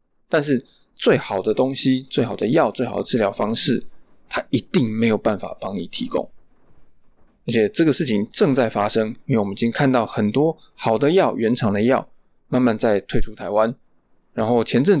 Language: Chinese